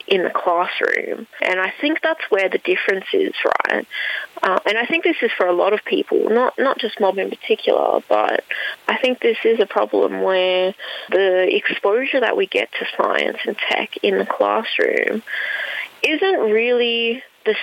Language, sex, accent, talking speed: English, female, Australian, 175 wpm